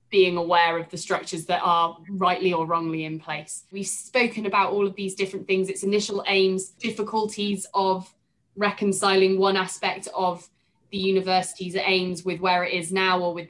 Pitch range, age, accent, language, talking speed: 180-225 Hz, 20-39, British, English, 175 wpm